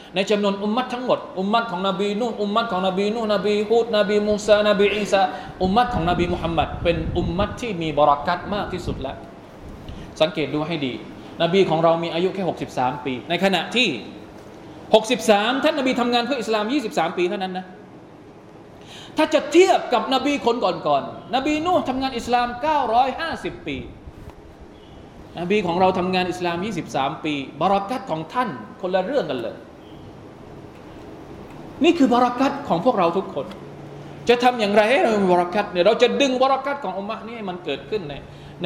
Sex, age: male, 20-39